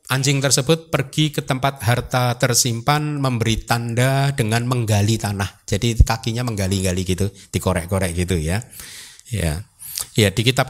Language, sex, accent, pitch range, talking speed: Indonesian, male, native, 105-140 Hz, 130 wpm